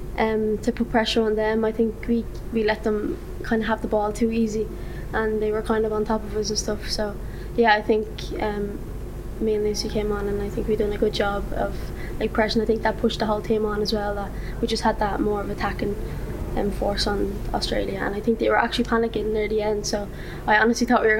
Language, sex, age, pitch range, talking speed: English, female, 10-29, 210-225 Hz, 250 wpm